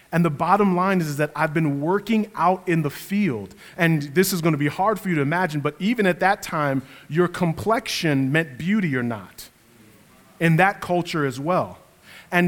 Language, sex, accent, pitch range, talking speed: English, male, American, 170-215 Hz, 195 wpm